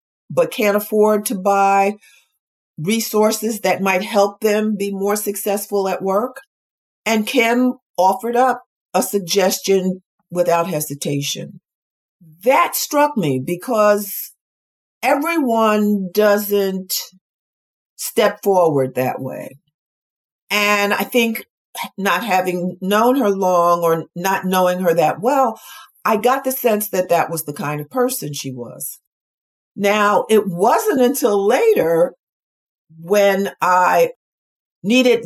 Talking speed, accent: 115 wpm, American